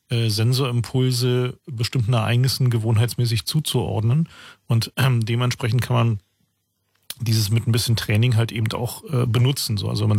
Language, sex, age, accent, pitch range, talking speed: German, male, 40-59, German, 115-125 Hz, 125 wpm